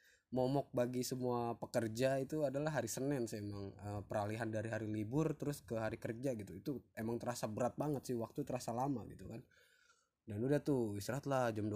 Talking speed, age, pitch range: 185 wpm, 20-39, 105-125 Hz